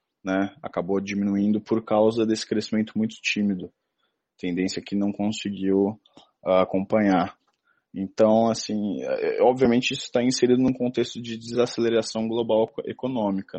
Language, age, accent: Portuguese, 20-39, Brazilian